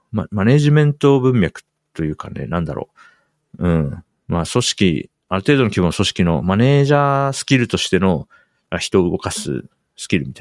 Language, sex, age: Japanese, male, 40-59